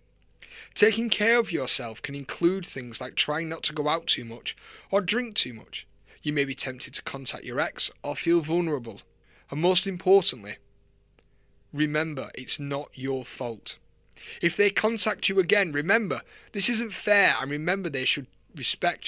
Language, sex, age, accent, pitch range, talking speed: English, male, 30-49, British, 130-180 Hz, 165 wpm